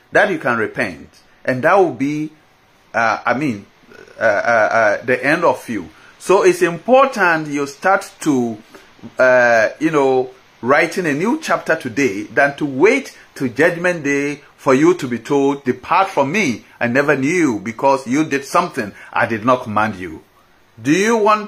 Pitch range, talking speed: 130-180 Hz, 170 wpm